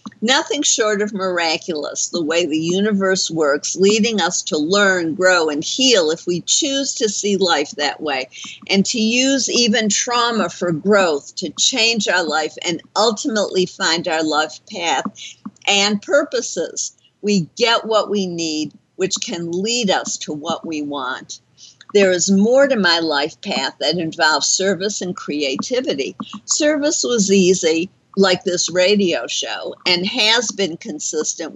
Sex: female